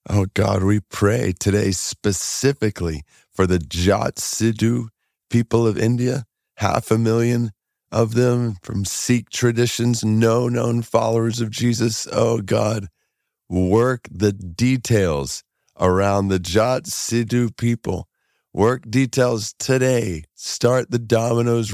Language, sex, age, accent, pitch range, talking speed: English, male, 40-59, American, 95-115 Hz, 115 wpm